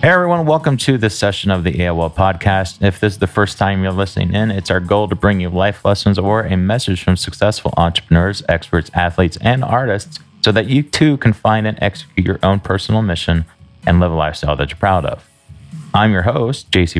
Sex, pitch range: male, 85-115 Hz